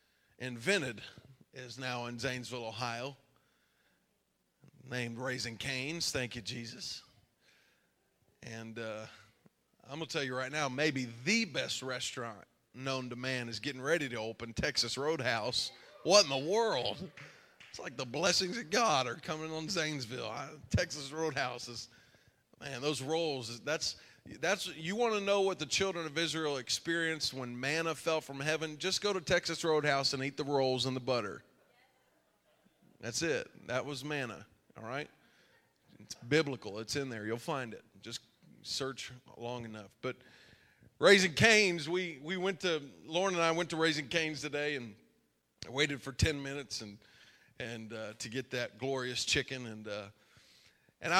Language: English